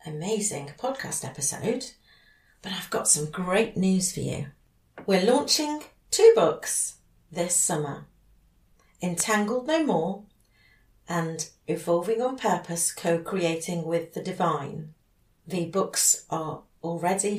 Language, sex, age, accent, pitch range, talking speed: English, female, 40-59, British, 160-210 Hz, 110 wpm